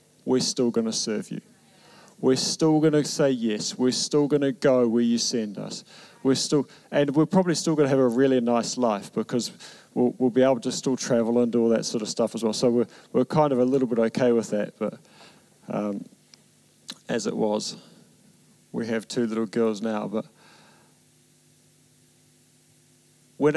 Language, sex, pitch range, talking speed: English, male, 120-155 Hz, 190 wpm